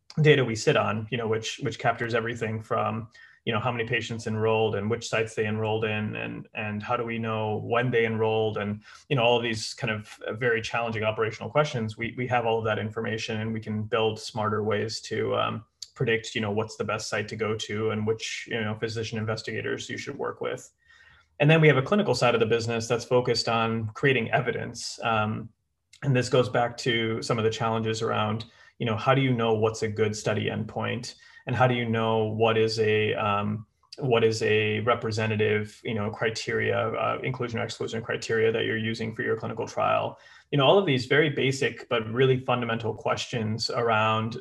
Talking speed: 210 wpm